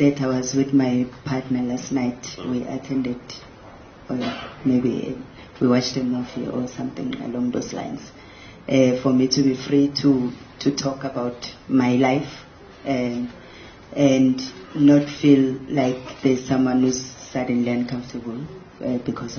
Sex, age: female, 40-59